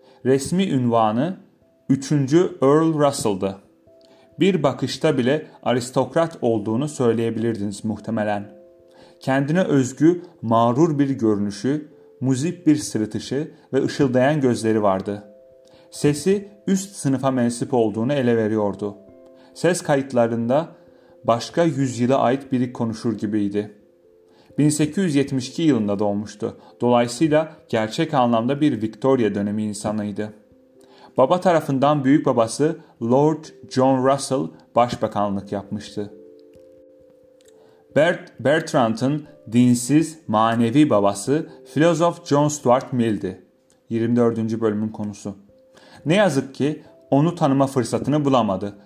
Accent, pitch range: native, 110-145 Hz